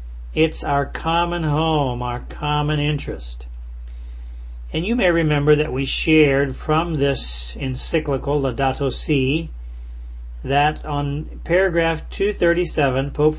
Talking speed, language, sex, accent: 110 wpm, English, male, American